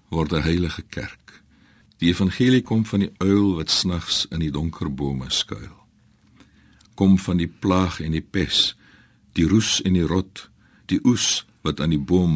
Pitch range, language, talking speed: 80-105 Hz, Dutch, 170 wpm